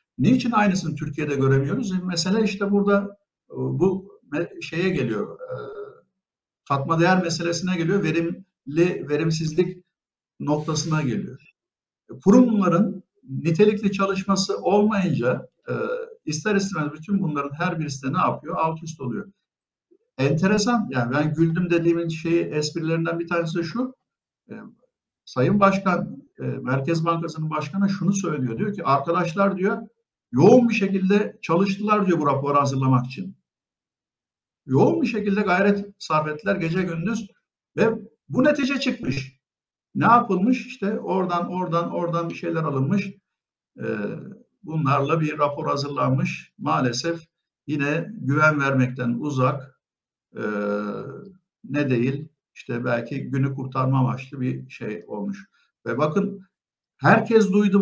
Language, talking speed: Turkish, 115 wpm